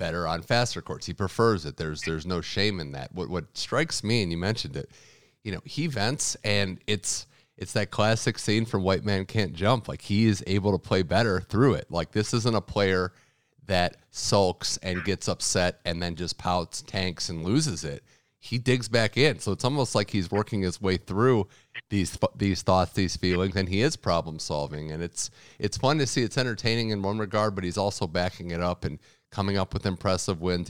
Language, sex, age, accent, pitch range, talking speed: English, male, 40-59, American, 90-110 Hz, 215 wpm